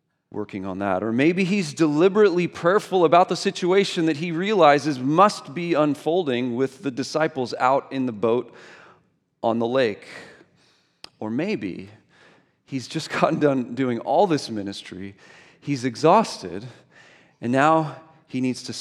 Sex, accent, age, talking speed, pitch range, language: male, American, 40-59, 140 wpm, 120-170 Hz, English